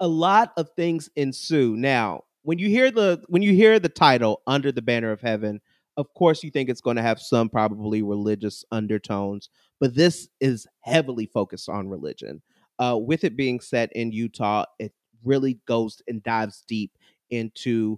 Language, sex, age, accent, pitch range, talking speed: English, male, 30-49, American, 110-145 Hz, 175 wpm